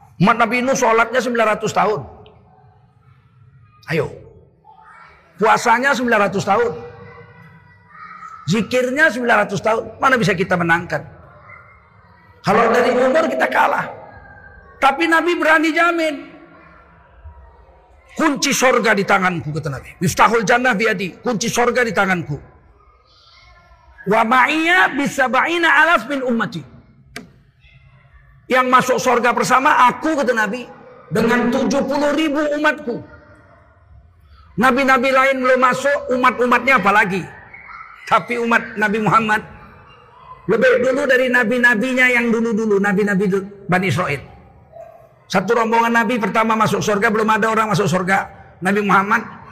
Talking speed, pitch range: 105 wpm, 190-260 Hz